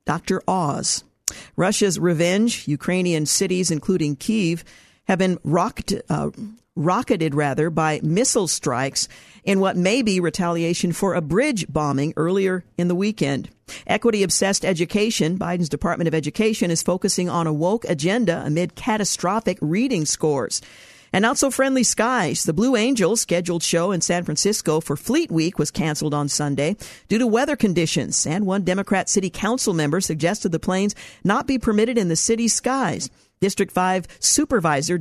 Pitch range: 160-210 Hz